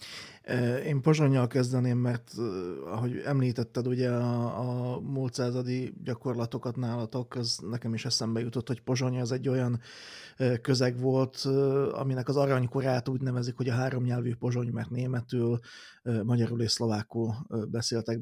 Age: 30-49